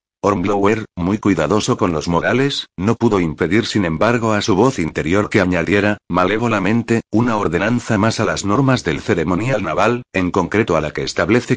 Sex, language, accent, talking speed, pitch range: male, Spanish, Spanish, 170 wpm, 95-115 Hz